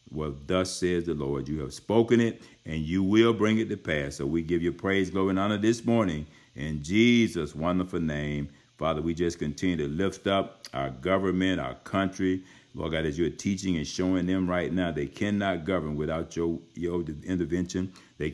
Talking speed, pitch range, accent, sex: 195 wpm, 75-95 Hz, American, male